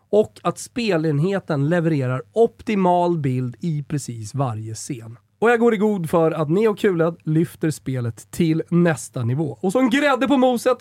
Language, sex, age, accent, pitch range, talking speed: Swedish, male, 30-49, native, 150-215 Hz, 160 wpm